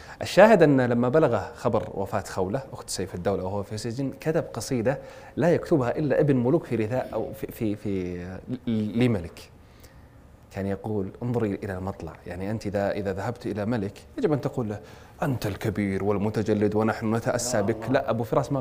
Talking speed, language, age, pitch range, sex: 165 wpm, Arabic, 30-49, 100-125 Hz, male